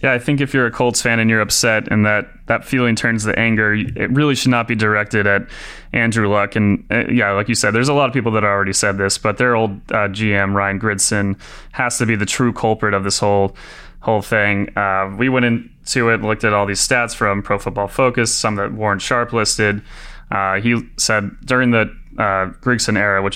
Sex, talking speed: male, 230 wpm